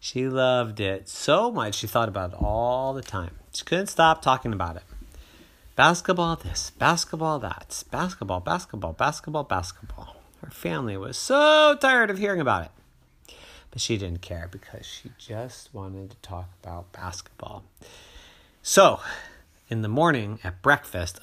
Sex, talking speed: male, 150 wpm